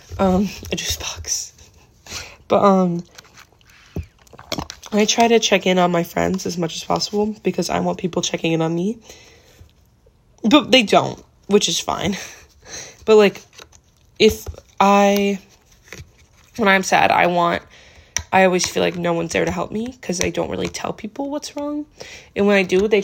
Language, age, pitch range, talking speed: English, 10-29, 175-225 Hz, 165 wpm